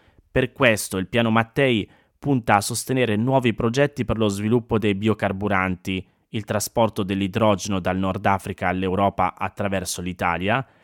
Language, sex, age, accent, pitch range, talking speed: Italian, male, 20-39, native, 100-120 Hz, 135 wpm